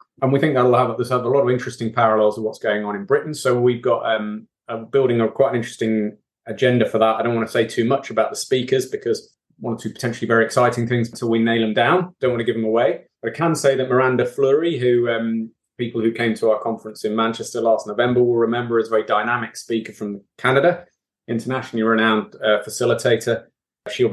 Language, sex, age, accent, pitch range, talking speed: English, male, 30-49, British, 110-130 Hz, 230 wpm